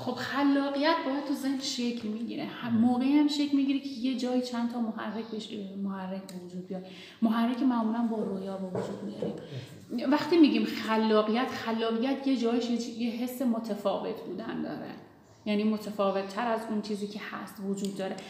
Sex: female